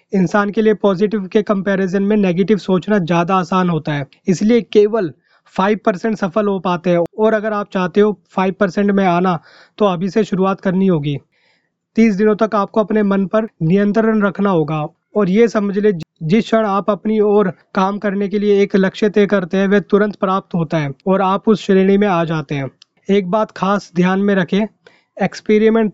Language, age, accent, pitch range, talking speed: Hindi, 20-39, native, 185-215 Hz, 190 wpm